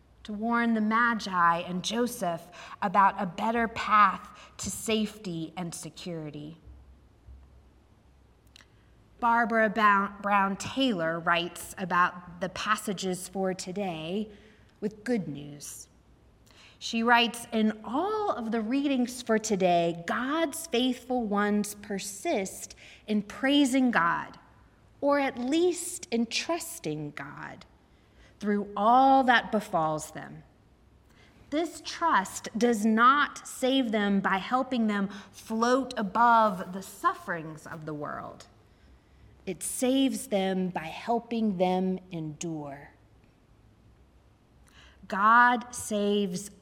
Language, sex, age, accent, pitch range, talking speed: English, female, 30-49, American, 175-235 Hz, 100 wpm